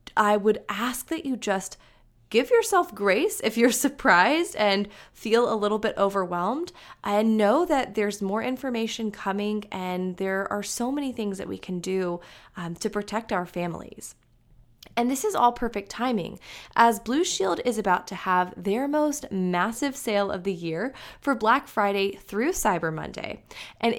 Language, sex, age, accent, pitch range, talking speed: English, female, 20-39, American, 185-245 Hz, 170 wpm